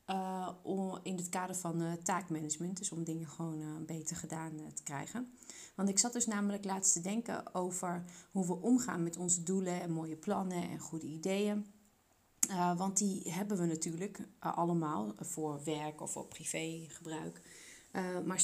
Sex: female